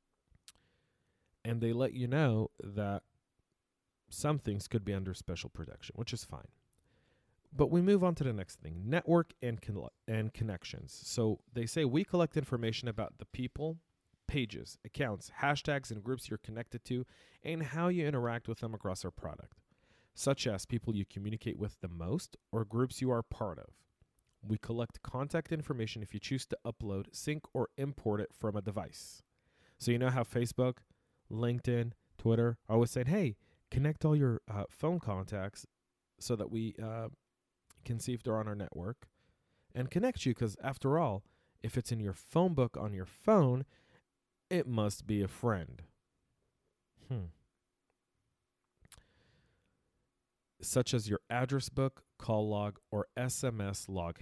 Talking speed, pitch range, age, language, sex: 160 wpm, 105-130 Hz, 40-59, English, male